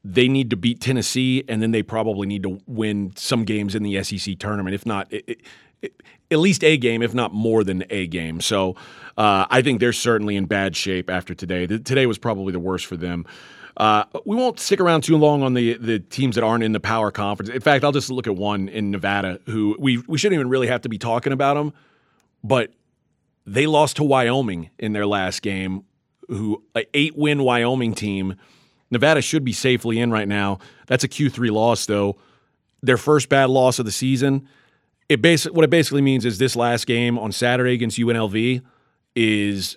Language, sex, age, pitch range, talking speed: English, male, 30-49, 105-130 Hz, 210 wpm